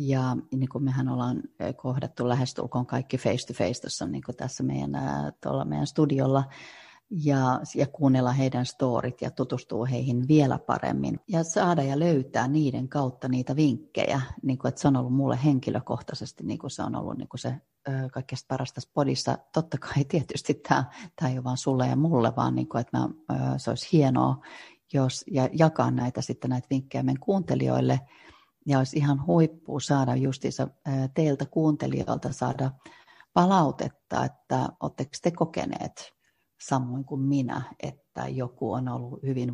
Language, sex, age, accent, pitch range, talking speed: Finnish, female, 30-49, native, 125-145 Hz, 150 wpm